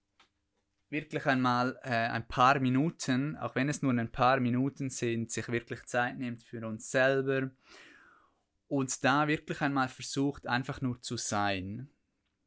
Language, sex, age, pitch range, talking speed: German, male, 20-39, 100-130 Hz, 145 wpm